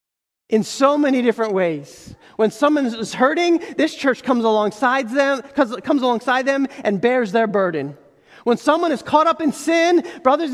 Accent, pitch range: American, 215-290 Hz